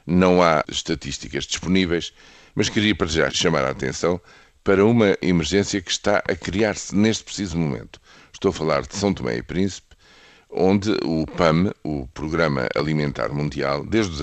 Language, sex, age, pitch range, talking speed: Portuguese, male, 50-69, 75-95 Hz, 160 wpm